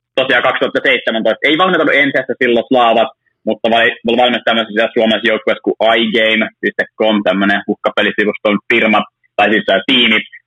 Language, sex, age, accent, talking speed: Finnish, male, 20-39, native, 125 wpm